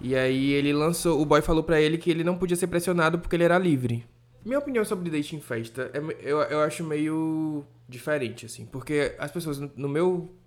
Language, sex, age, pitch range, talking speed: Portuguese, male, 20-39, 140-200 Hz, 210 wpm